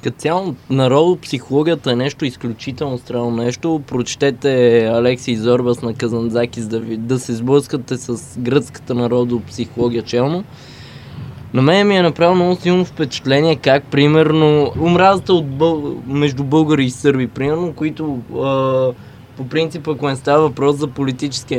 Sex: male